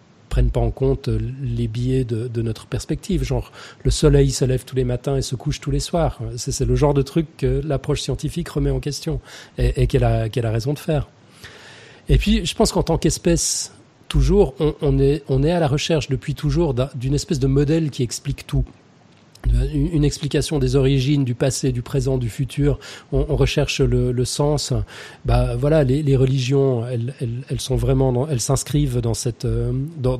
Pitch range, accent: 125-145 Hz, French